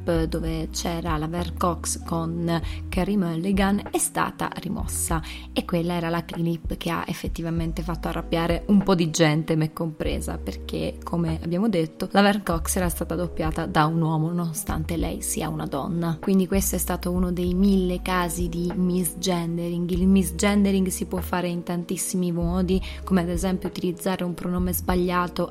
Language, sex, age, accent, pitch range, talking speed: Italian, female, 20-39, native, 170-195 Hz, 160 wpm